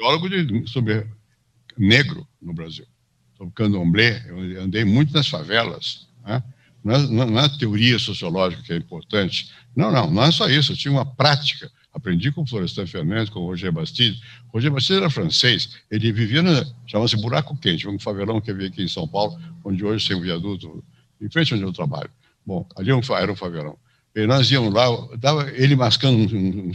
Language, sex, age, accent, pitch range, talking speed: Portuguese, male, 60-79, Brazilian, 105-145 Hz, 195 wpm